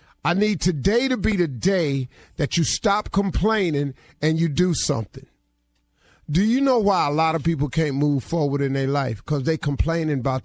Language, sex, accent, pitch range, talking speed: English, male, American, 150-195 Hz, 190 wpm